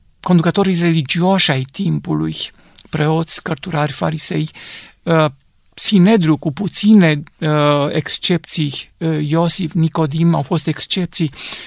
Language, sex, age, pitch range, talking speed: Romanian, male, 50-69, 160-190 Hz, 80 wpm